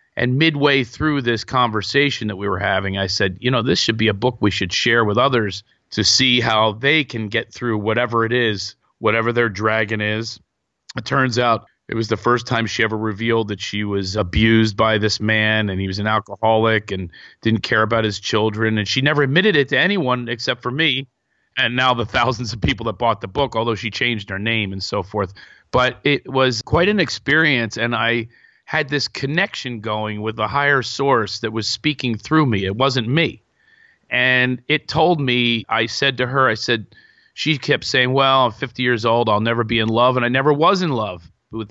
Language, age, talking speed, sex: English, 40-59, 215 wpm, male